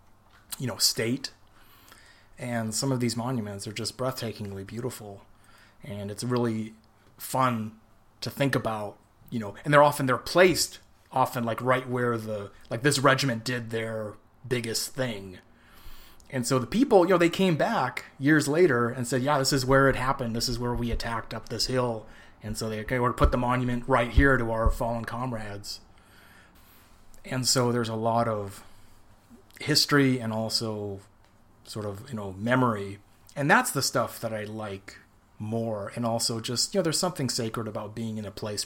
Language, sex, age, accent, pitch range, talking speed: English, male, 30-49, American, 105-125 Hz, 180 wpm